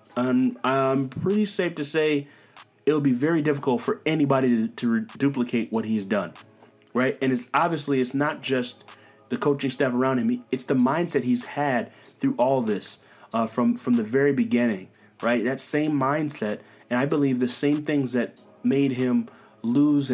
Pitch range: 120-150 Hz